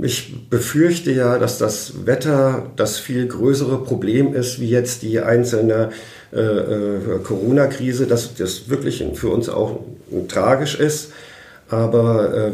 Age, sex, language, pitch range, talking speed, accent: 50-69, male, German, 110-130 Hz, 130 wpm, German